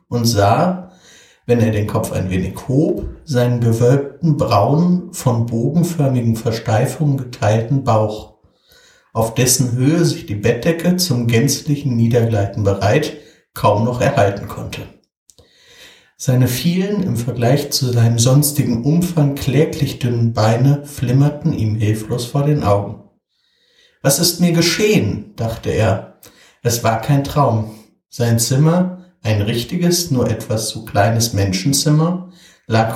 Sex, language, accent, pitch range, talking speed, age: male, German, German, 115-150 Hz, 125 wpm, 60-79